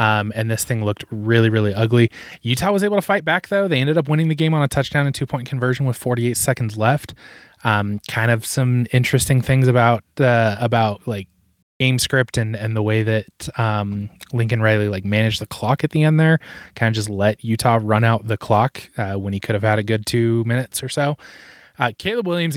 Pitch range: 110-130 Hz